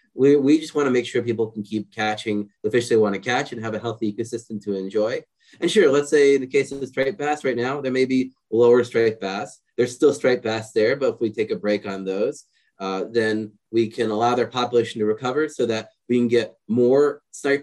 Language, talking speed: English, 235 wpm